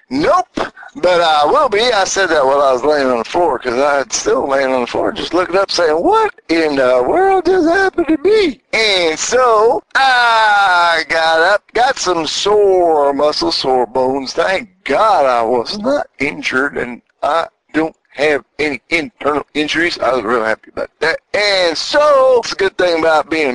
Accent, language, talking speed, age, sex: American, English, 185 wpm, 50-69, male